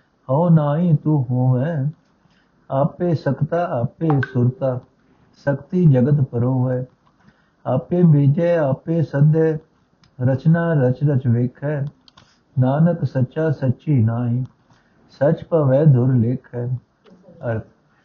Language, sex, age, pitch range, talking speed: Punjabi, male, 60-79, 130-160 Hz, 95 wpm